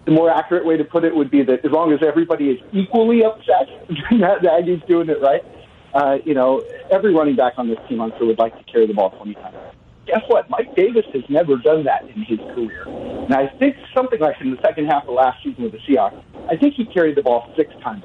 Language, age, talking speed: English, 50-69, 245 wpm